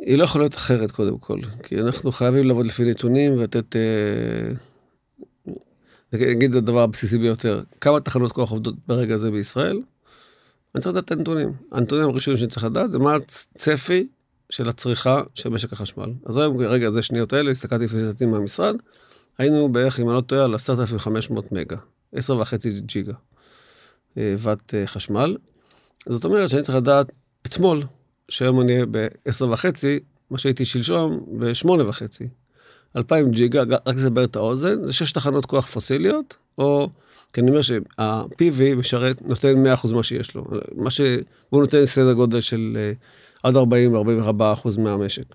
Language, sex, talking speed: Hebrew, male, 150 wpm